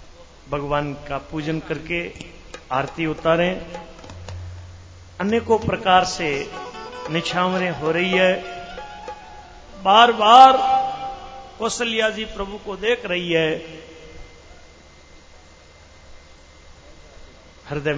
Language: Hindi